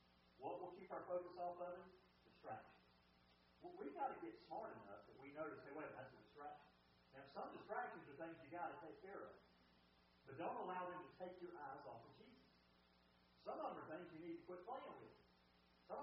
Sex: male